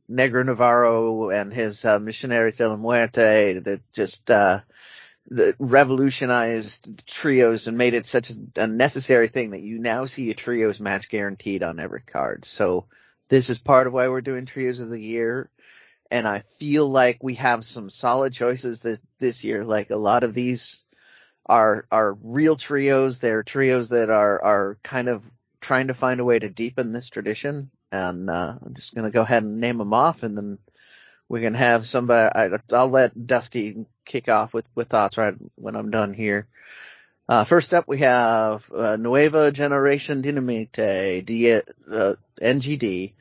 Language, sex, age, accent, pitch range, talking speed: English, male, 30-49, American, 110-130 Hz, 175 wpm